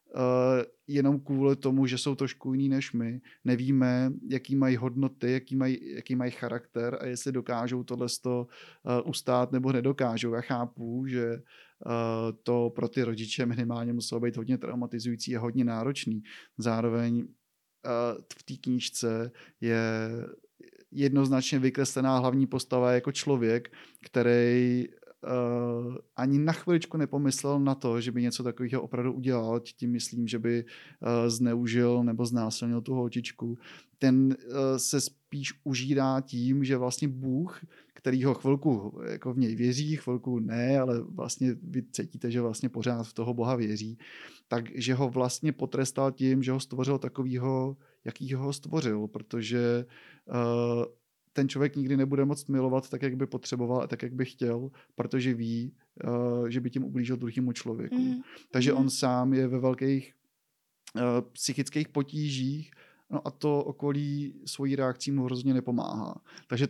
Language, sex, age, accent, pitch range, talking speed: Czech, male, 30-49, native, 120-135 Hz, 145 wpm